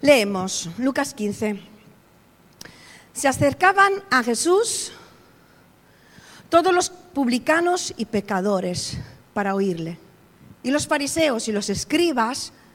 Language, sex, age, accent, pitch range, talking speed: Spanish, female, 40-59, Spanish, 215-325 Hz, 95 wpm